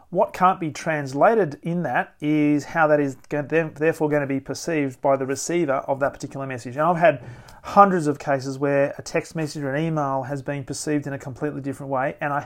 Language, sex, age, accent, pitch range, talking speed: English, male, 30-49, Australian, 140-165 Hz, 215 wpm